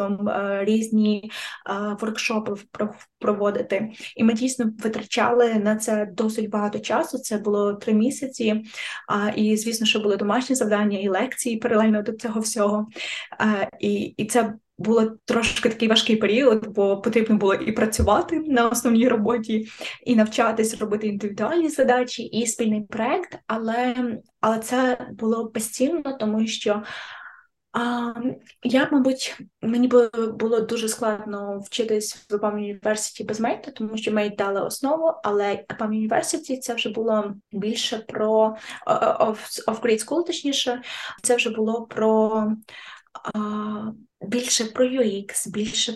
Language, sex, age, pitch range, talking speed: Ukrainian, female, 20-39, 210-235 Hz, 125 wpm